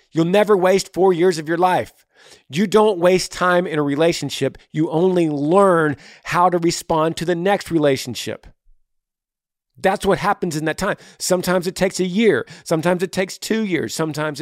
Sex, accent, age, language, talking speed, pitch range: male, American, 40-59, English, 175 wpm, 110-180 Hz